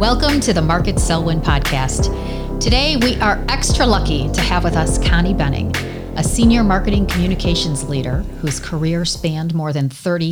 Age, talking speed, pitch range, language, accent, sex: 40-59, 170 wpm, 140-200 Hz, English, American, female